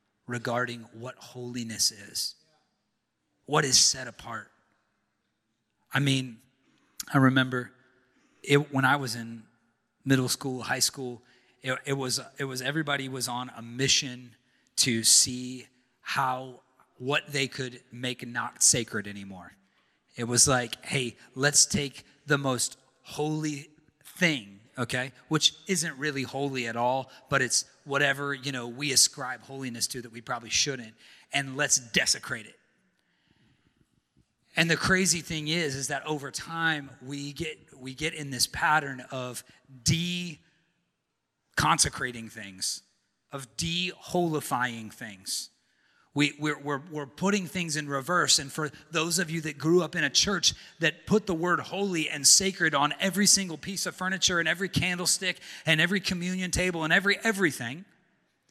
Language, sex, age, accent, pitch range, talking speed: English, male, 30-49, American, 125-175 Hz, 145 wpm